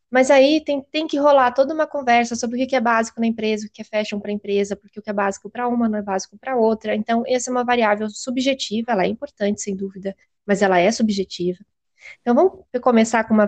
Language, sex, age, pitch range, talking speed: Portuguese, female, 20-39, 200-245 Hz, 245 wpm